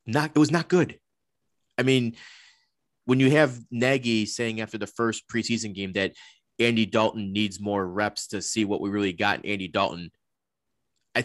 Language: English